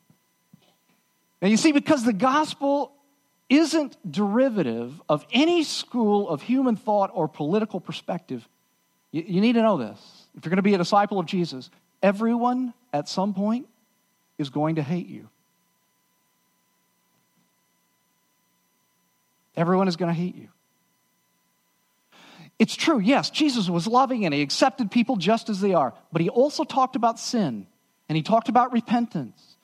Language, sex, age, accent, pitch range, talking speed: English, male, 40-59, American, 175-255 Hz, 145 wpm